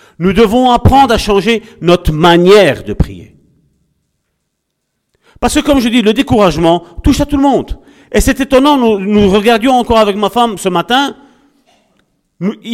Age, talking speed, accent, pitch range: 50-69, 160 wpm, French, 200-270 Hz